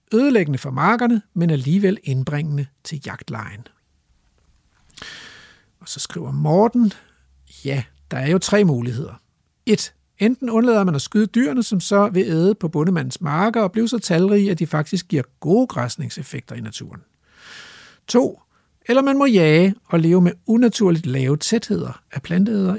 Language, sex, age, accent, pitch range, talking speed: Danish, male, 60-79, native, 140-200 Hz, 150 wpm